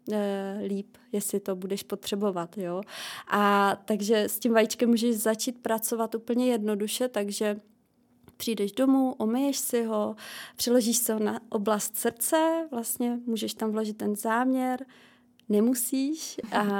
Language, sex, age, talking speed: Czech, female, 20-39, 125 wpm